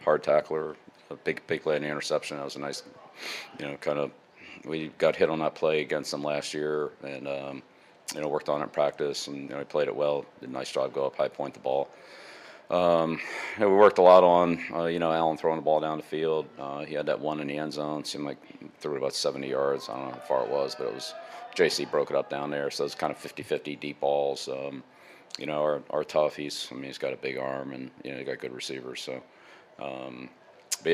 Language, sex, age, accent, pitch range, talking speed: English, male, 40-59, American, 70-75 Hz, 260 wpm